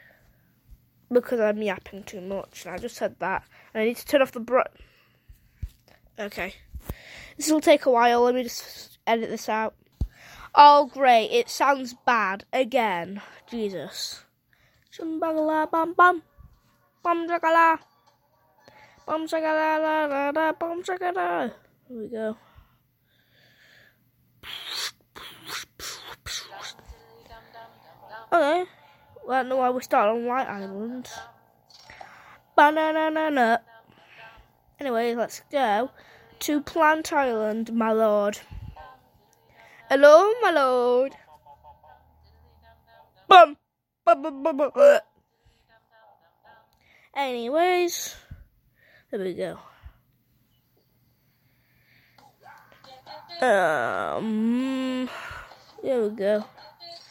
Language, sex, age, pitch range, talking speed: English, female, 10-29, 220-315 Hz, 75 wpm